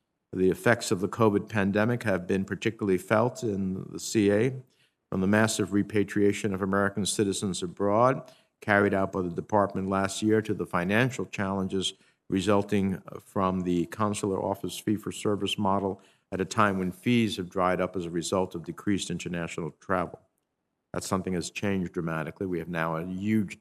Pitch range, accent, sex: 90-110 Hz, American, male